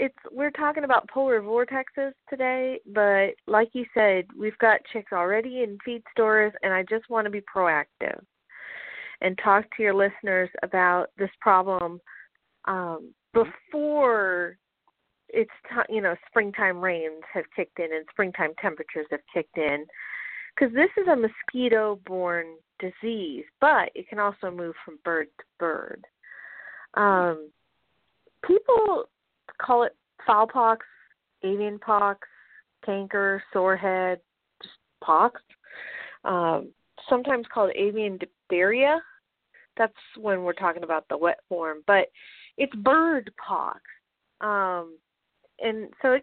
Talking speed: 130 wpm